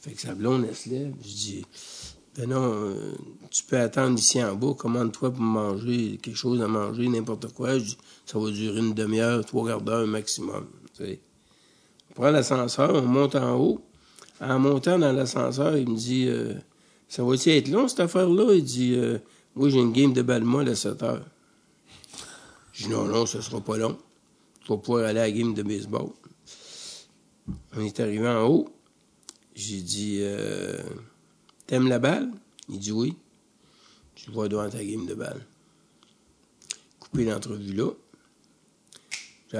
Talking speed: 175 wpm